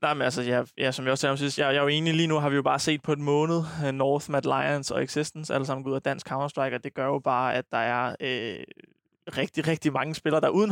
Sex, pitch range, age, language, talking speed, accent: male, 140-150 Hz, 20-39, Danish, 295 wpm, native